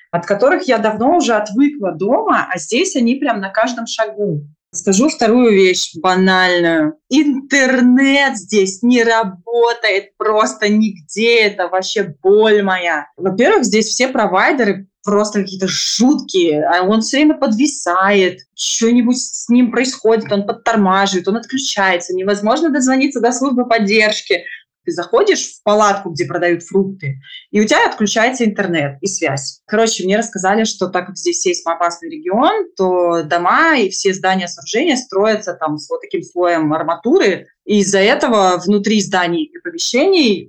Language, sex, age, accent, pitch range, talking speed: Russian, female, 20-39, native, 180-245 Hz, 145 wpm